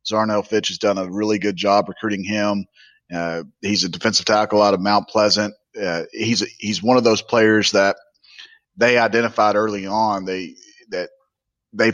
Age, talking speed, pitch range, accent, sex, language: 30-49, 175 wpm, 95-110 Hz, American, male, English